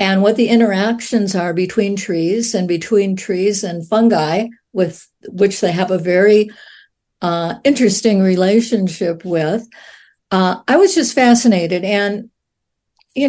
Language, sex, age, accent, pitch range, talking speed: English, female, 60-79, American, 185-230 Hz, 130 wpm